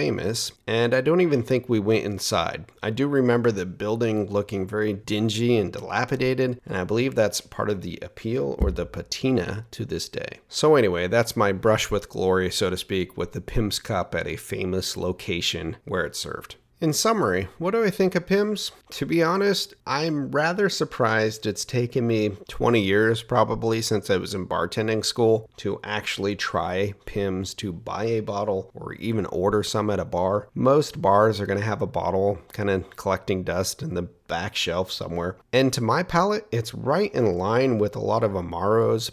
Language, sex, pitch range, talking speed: English, male, 95-120 Hz, 190 wpm